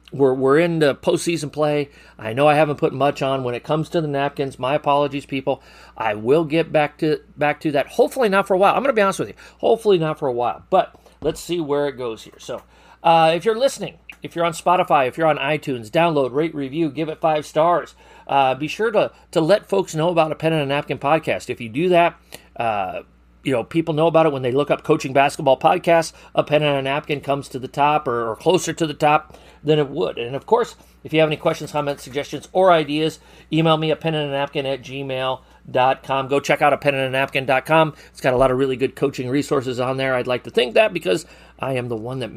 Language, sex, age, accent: English, male, 40-59, American